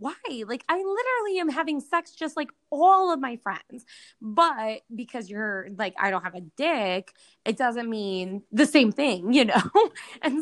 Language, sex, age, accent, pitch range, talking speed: English, female, 10-29, American, 215-290 Hz, 180 wpm